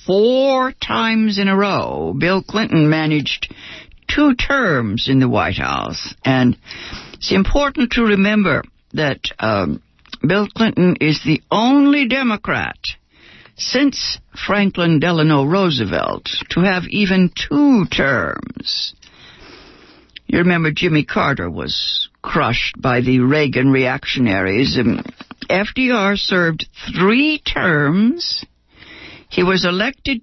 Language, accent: English, American